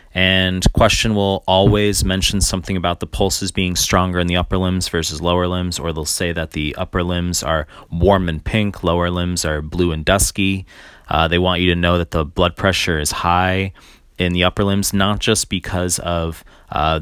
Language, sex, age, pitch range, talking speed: English, male, 30-49, 85-100 Hz, 200 wpm